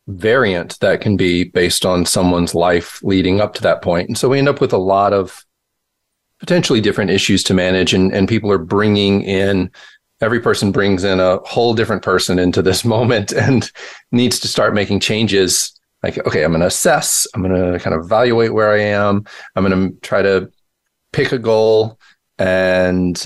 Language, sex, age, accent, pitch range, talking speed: English, male, 40-59, American, 90-110 Hz, 190 wpm